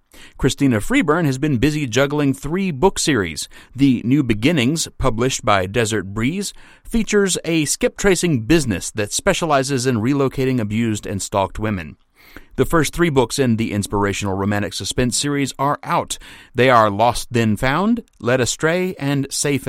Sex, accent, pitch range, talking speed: male, American, 105-150 Hz, 150 wpm